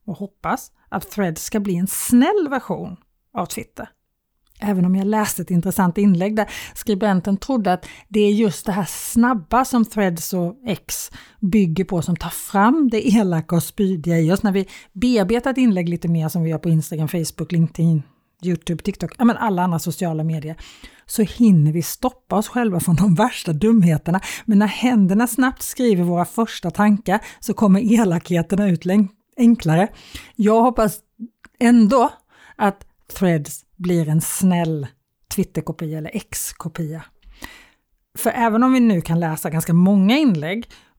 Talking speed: 160 wpm